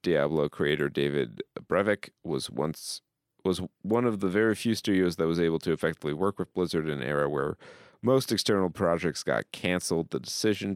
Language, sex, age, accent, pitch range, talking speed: English, male, 40-59, American, 80-100 Hz, 180 wpm